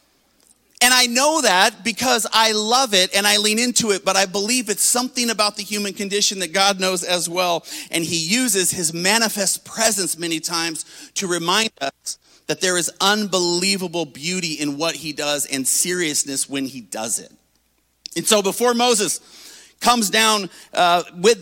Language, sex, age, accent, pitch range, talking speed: English, male, 40-59, American, 185-235 Hz, 170 wpm